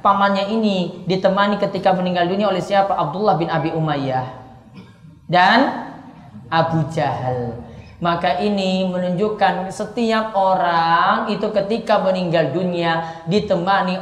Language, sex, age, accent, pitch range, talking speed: Indonesian, female, 30-49, native, 160-255 Hz, 105 wpm